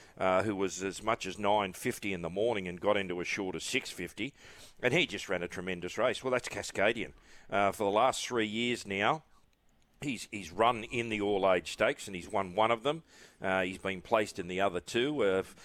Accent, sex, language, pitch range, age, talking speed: Australian, male, English, 100-130 Hz, 40-59, 215 wpm